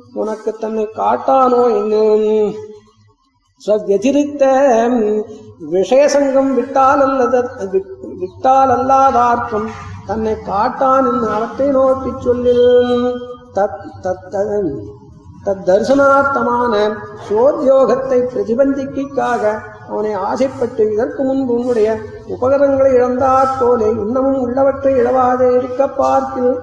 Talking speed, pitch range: 70 wpm, 215-265 Hz